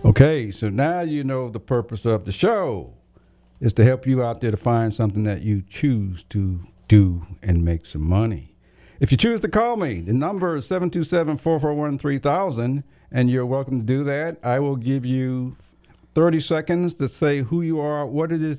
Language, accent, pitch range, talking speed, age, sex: English, American, 110-145 Hz, 185 wpm, 50-69, male